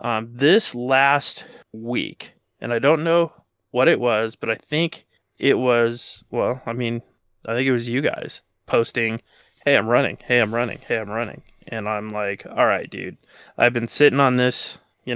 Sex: male